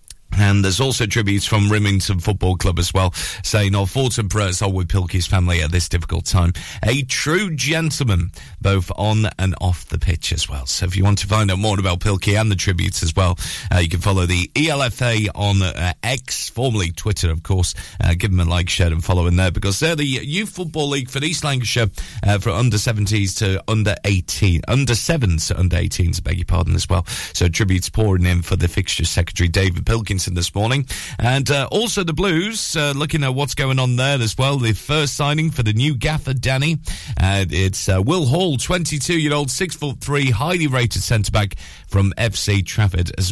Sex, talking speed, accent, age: male, 205 wpm, British, 30-49